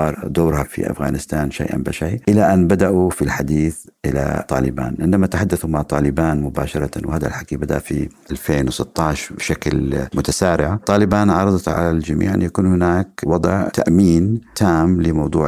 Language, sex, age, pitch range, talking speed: Arabic, male, 50-69, 70-85 Hz, 135 wpm